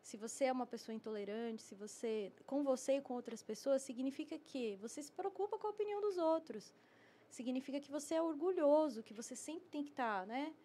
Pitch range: 230-300 Hz